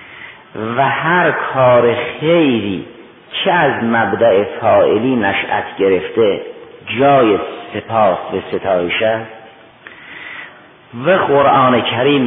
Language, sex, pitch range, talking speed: Persian, male, 115-145 Hz, 85 wpm